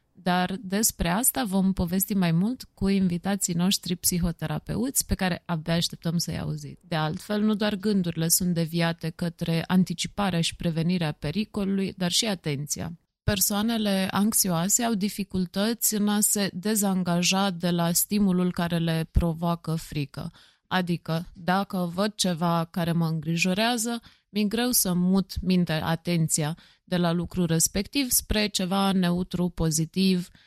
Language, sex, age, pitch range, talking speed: Romanian, female, 30-49, 170-205 Hz, 135 wpm